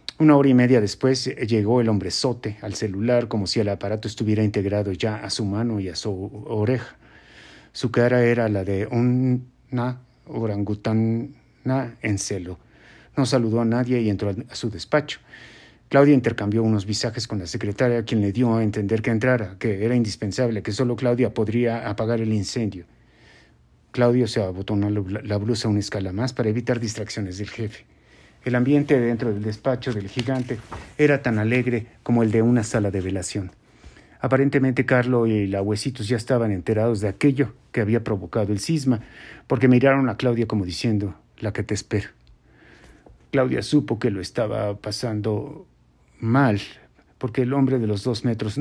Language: Spanish